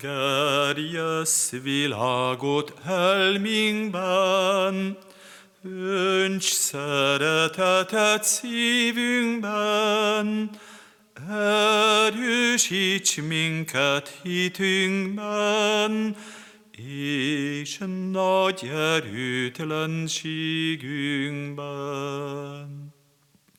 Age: 40-59